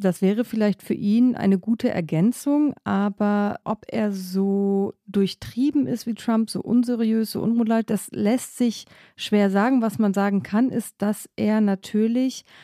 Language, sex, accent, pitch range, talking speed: German, female, German, 180-215 Hz, 150 wpm